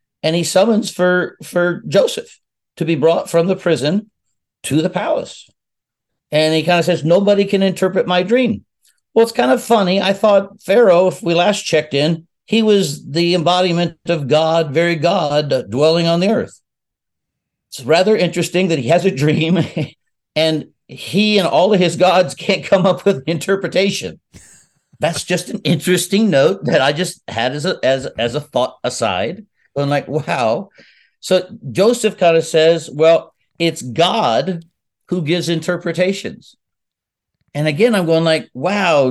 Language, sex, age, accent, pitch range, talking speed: English, male, 50-69, American, 155-190 Hz, 160 wpm